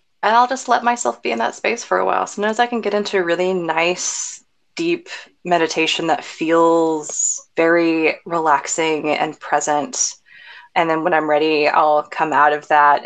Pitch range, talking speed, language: 150-180 Hz, 175 wpm, English